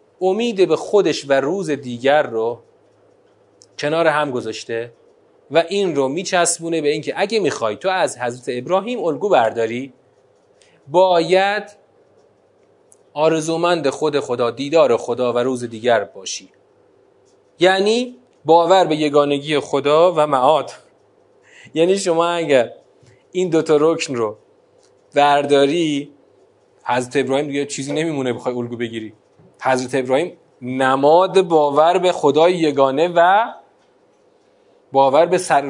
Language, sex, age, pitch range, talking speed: Persian, male, 30-49, 145-240 Hz, 115 wpm